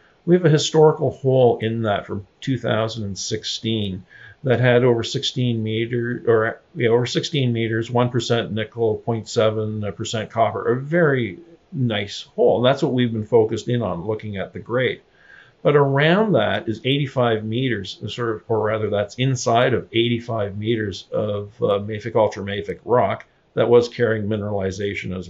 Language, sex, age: English, male, 50-69